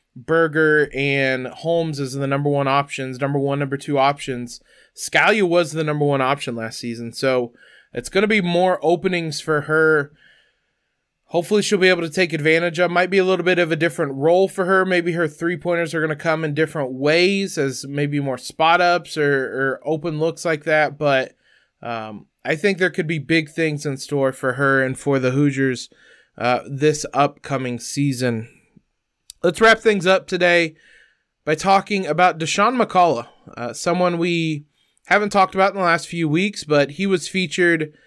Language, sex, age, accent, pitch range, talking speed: English, male, 20-39, American, 140-175 Hz, 185 wpm